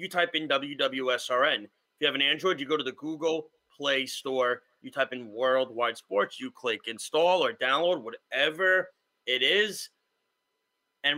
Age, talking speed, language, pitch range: 30-49, 160 wpm, English, 130-180 Hz